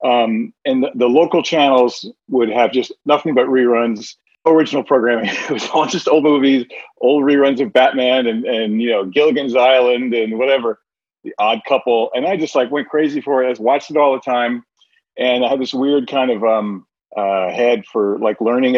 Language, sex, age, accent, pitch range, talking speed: English, male, 40-59, American, 115-145 Hz, 195 wpm